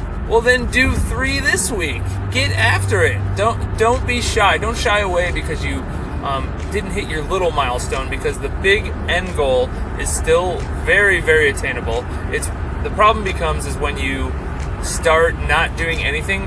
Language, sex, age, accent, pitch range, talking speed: English, male, 20-39, American, 70-95 Hz, 165 wpm